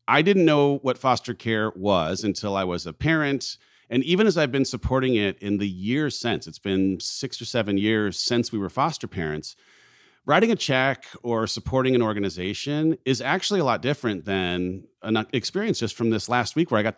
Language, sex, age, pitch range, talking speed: English, male, 40-59, 95-125 Hz, 200 wpm